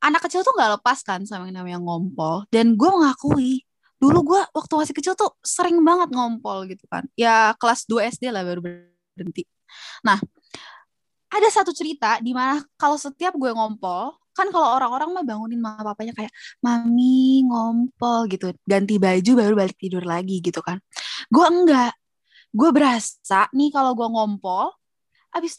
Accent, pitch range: native, 200-290 Hz